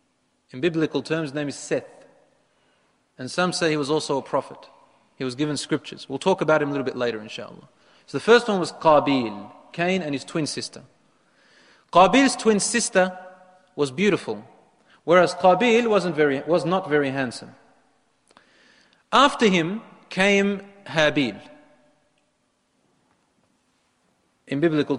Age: 30-49